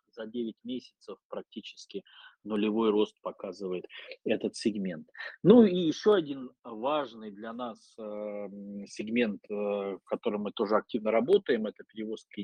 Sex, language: male, Russian